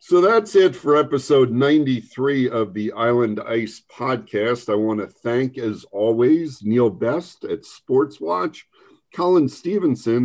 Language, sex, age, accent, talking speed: English, male, 50-69, American, 140 wpm